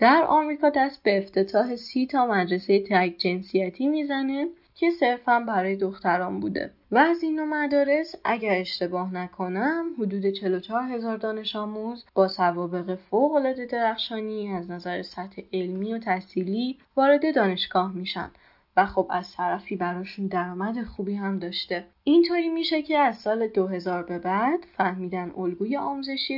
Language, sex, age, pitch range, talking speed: Persian, female, 10-29, 185-245 Hz, 140 wpm